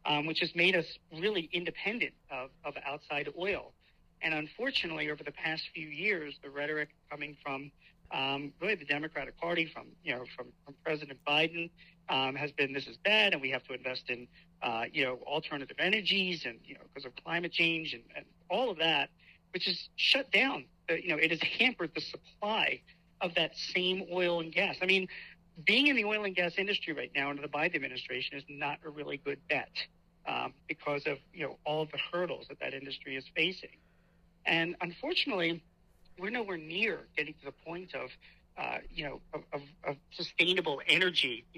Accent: American